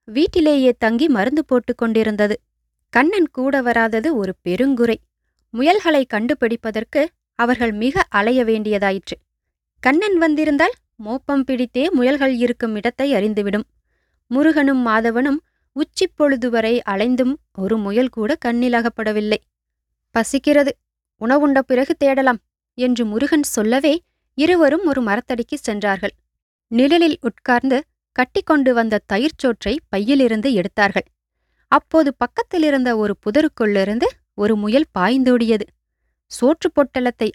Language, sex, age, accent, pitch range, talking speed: English, female, 20-39, Indian, 220-285 Hz, 100 wpm